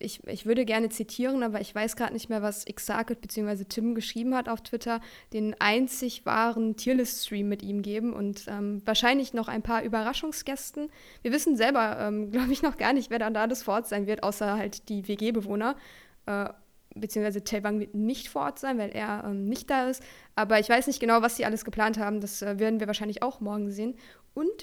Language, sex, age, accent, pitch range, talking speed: German, female, 20-39, German, 210-245 Hz, 210 wpm